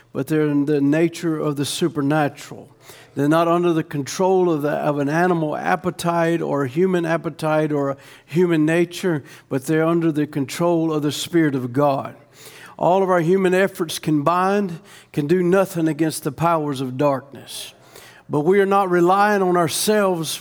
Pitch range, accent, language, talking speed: 155-195 Hz, American, English, 170 wpm